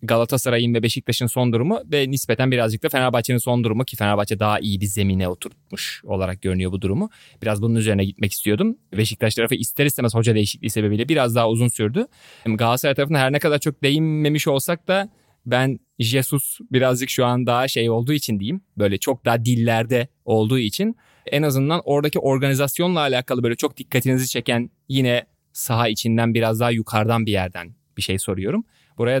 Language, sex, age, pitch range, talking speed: Turkish, male, 30-49, 115-140 Hz, 175 wpm